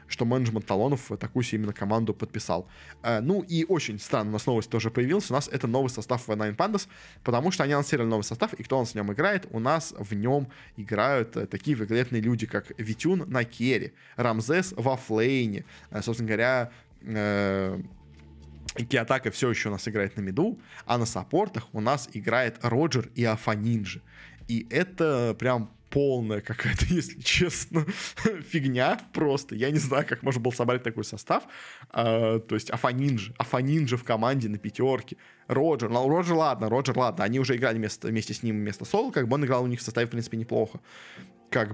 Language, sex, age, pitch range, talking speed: Russian, male, 20-39, 105-130 Hz, 185 wpm